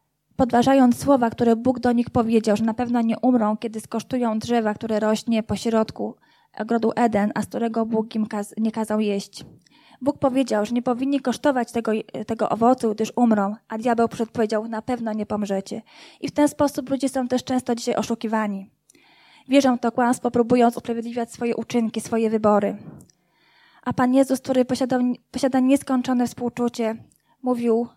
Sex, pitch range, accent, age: female, 220-250 Hz, native, 20-39